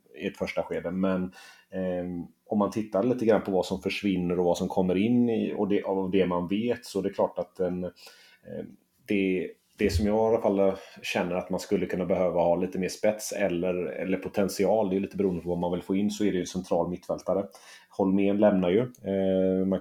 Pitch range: 90-100 Hz